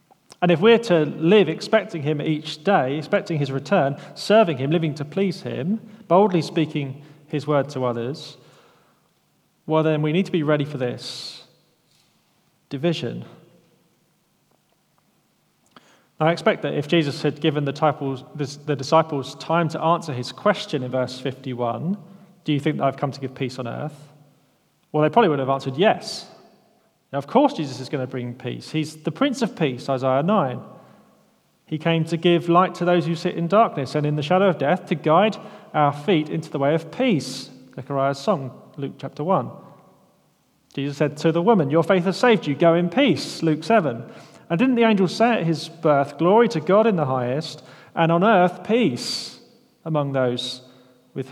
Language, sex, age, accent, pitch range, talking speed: English, male, 30-49, British, 135-180 Hz, 180 wpm